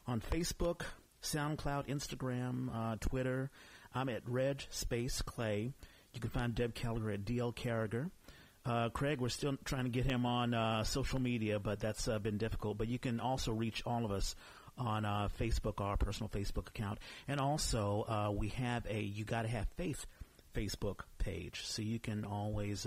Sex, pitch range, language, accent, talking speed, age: male, 105-130 Hz, English, American, 175 wpm, 40-59